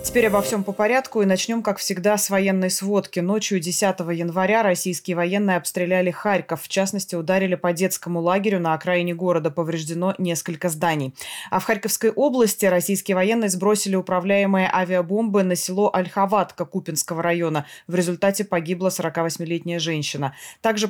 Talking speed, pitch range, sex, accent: 145 wpm, 175-205 Hz, female, native